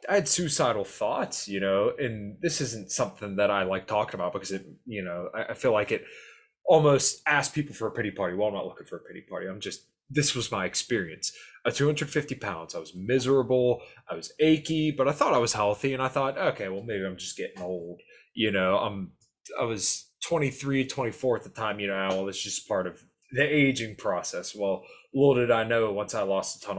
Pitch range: 95-135 Hz